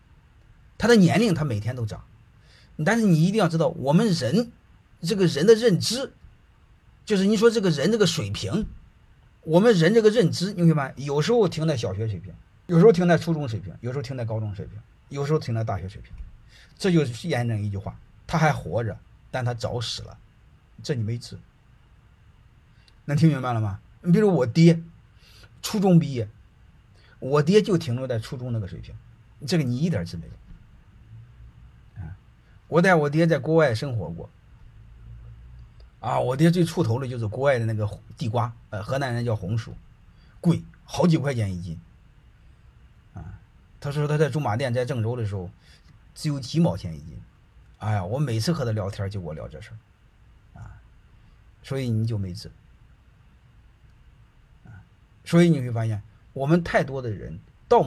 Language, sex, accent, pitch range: Chinese, male, native, 105-160 Hz